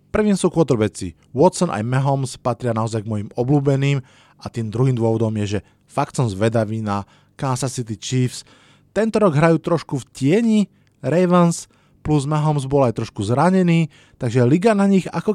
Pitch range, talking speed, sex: 115-150 Hz, 165 wpm, male